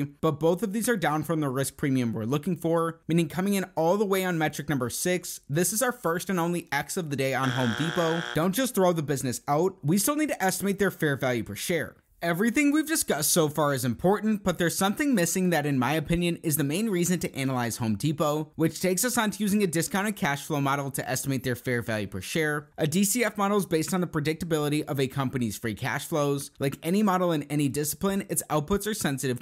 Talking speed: 240 wpm